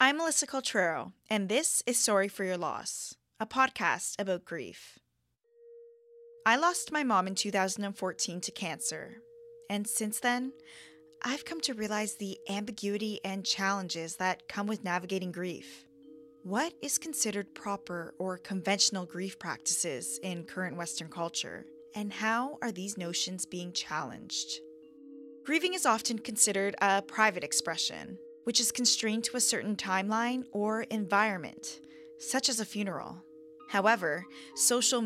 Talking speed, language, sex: 135 wpm, English, female